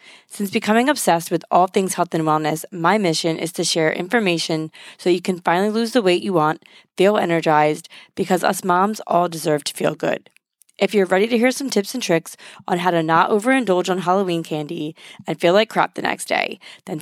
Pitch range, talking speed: 165-205 Hz, 210 wpm